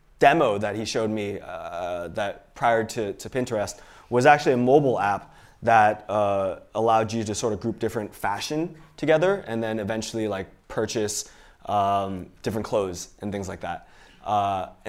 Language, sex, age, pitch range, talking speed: English, male, 20-39, 100-130 Hz, 160 wpm